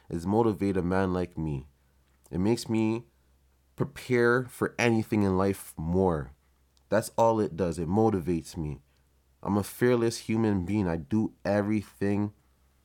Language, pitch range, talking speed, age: English, 85-115 Hz, 140 wpm, 20-39